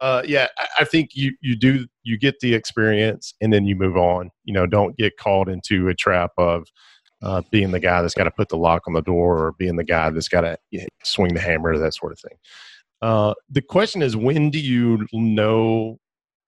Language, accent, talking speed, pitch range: English, American, 225 wpm, 95-120 Hz